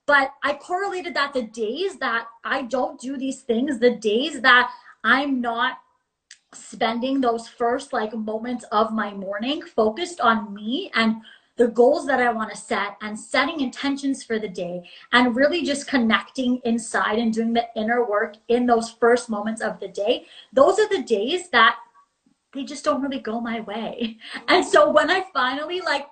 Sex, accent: female, American